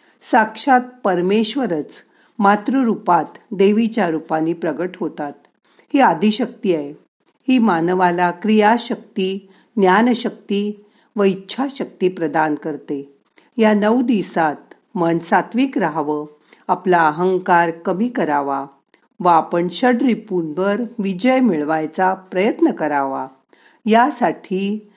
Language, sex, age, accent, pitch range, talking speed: Marathi, female, 50-69, native, 160-215 Hz, 90 wpm